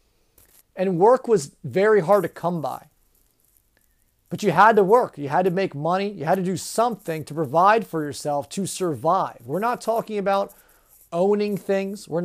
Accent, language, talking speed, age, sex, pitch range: American, English, 175 wpm, 40-59, male, 155-195 Hz